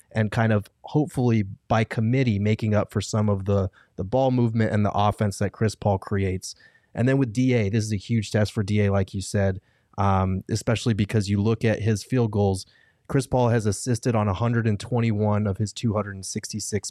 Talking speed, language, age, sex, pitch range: 190 wpm, English, 20-39, male, 105-115 Hz